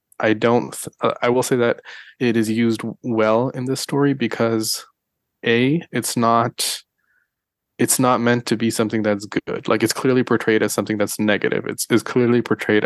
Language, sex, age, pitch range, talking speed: English, male, 20-39, 110-125 Hz, 175 wpm